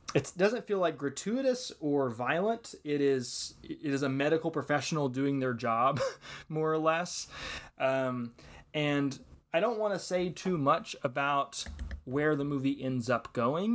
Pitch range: 120-145 Hz